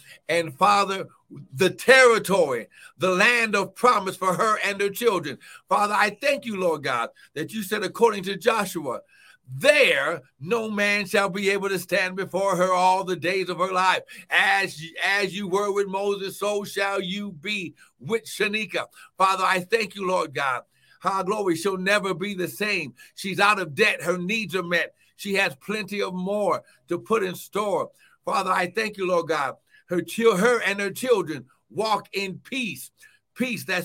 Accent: American